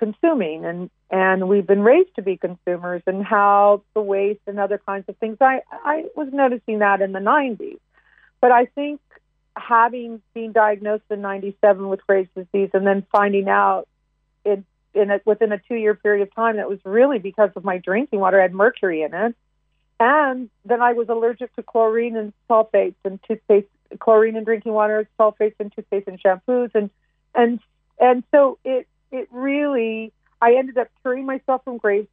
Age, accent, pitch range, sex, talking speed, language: 40-59, American, 195-240 Hz, female, 175 wpm, English